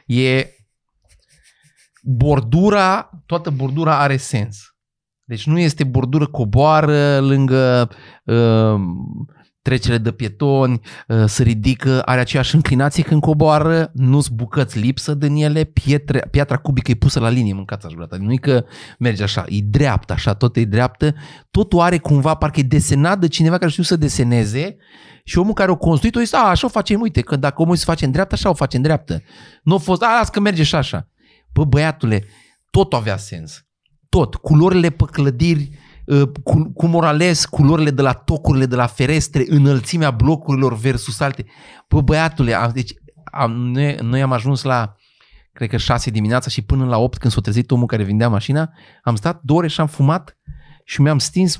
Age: 30-49